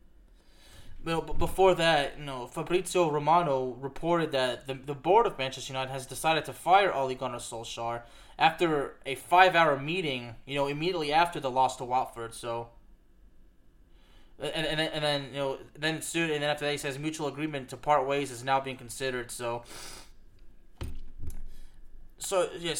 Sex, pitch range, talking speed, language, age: male, 135-175 Hz, 160 wpm, English, 20-39